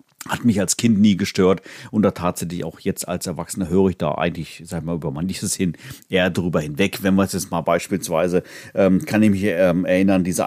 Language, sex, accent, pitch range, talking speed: German, male, German, 95-115 Hz, 225 wpm